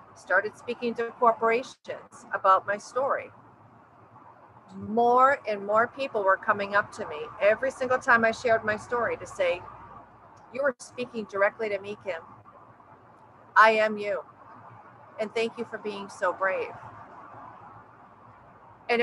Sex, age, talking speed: female, 40-59, 135 wpm